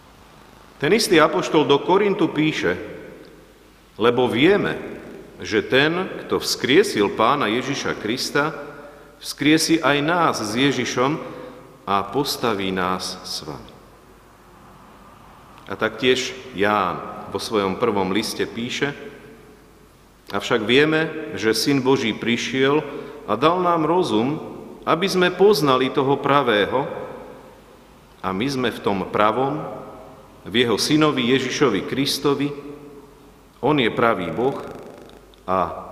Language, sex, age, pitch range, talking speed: Slovak, male, 50-69, 110-150 Hz, 105 wpm